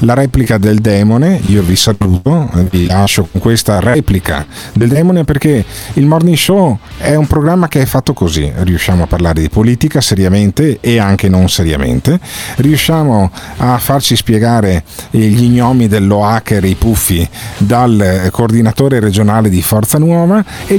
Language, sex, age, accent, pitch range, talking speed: Italian, male, 40-59, native, 100-150 Hz, 145 wpm